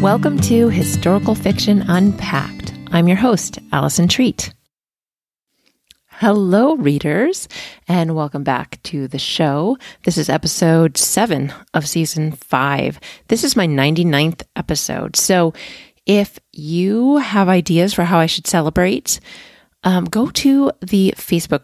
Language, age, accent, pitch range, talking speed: English, 30-49, American, 155-205 Hz, 125 wpm